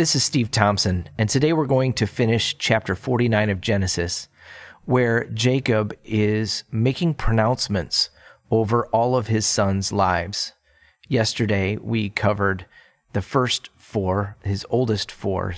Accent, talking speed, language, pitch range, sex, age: American, 130 wpm, English, 100-120 Hz, male, 30-49